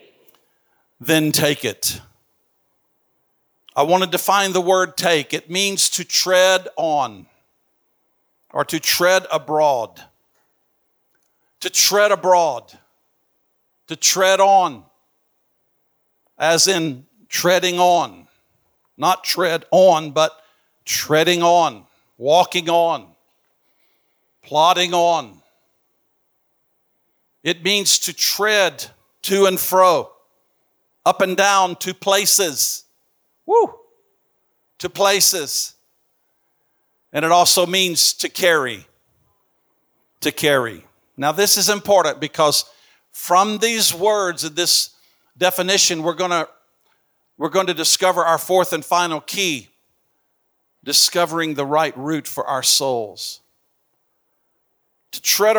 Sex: male